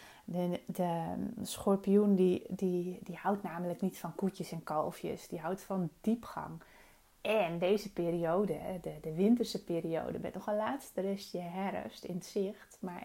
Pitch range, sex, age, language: 175-220 Hz, female, 30-49, Dutch